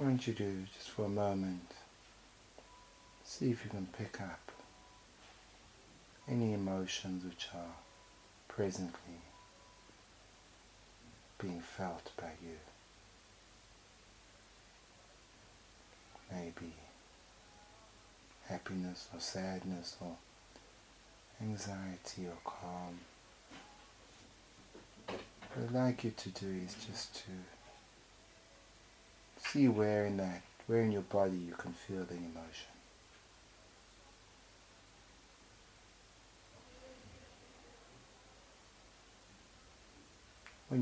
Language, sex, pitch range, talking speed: English, male, 90-105 Hz, 80 wpm